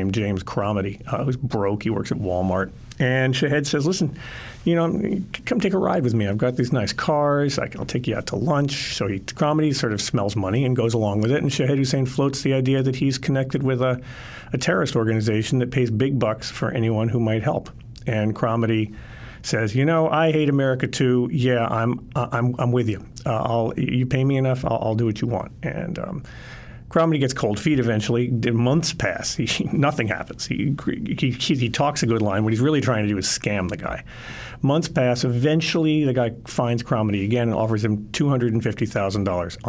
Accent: American